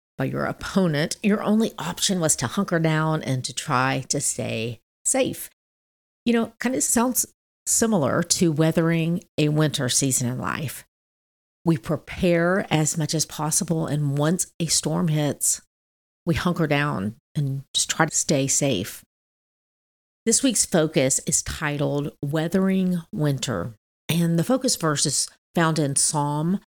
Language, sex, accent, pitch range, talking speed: English, female, American, 140-180 Hz, 145 wpm